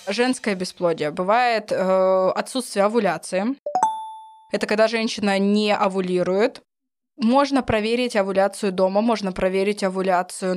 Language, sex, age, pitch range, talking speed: Russian, female, 20-39, 190-220 Hz, 100 wpm